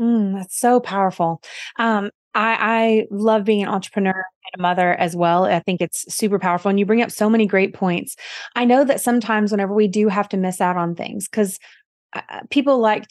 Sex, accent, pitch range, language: female, American, 185-220 Hz, English